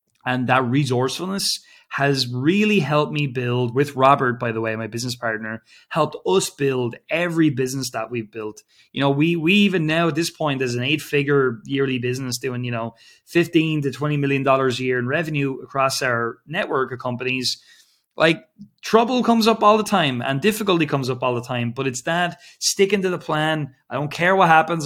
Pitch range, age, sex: 125-155 Hz, 20-39, male